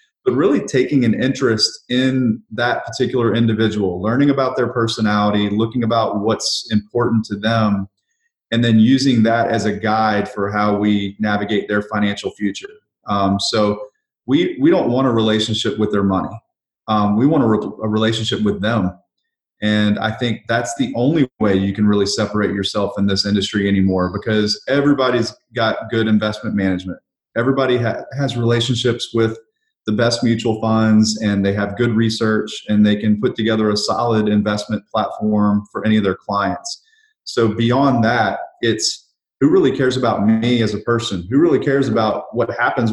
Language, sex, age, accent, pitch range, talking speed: English, male, 30-49, American, 105-120 Hz, 170 wpm